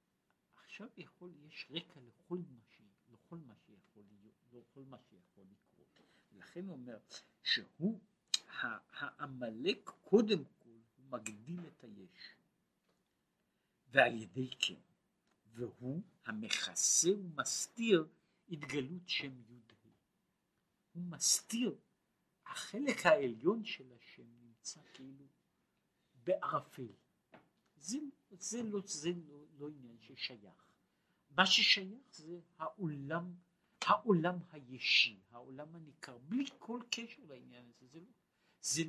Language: Hebrew